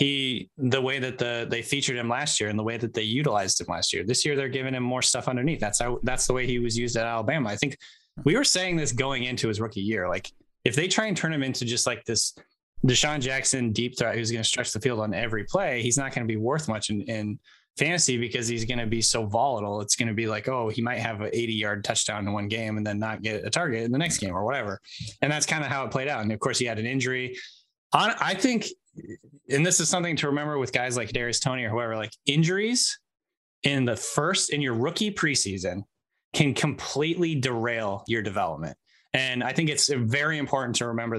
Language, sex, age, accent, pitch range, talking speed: English, male, 20-39, American, 115-140 Hz, 240 wpm